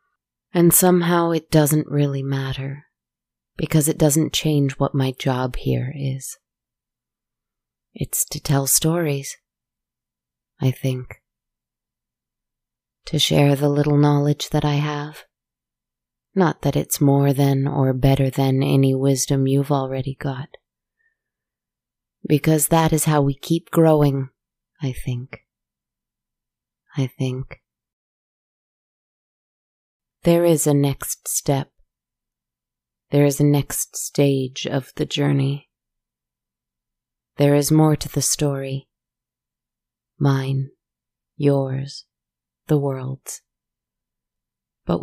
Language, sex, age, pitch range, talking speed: English, female, 20-39, 130-150 Hz, 105 wpm